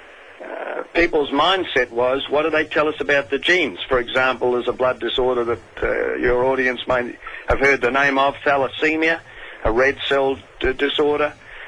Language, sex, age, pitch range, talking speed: English, male, 50-69, 125-150 Hz, 170 wpm